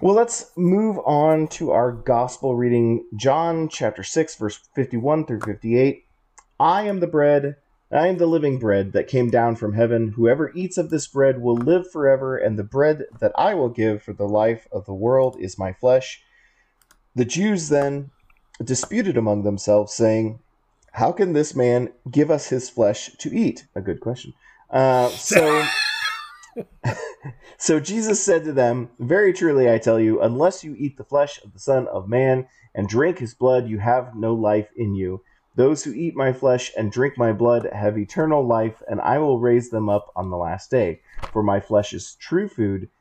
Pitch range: 110-145 Hz